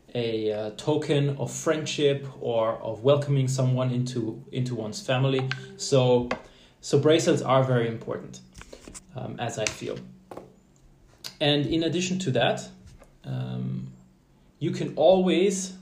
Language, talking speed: English, 120 wpm